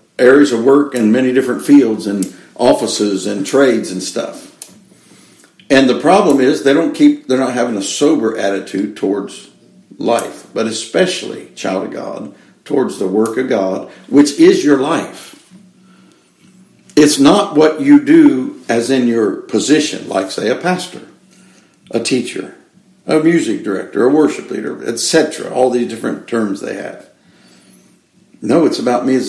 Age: 60-79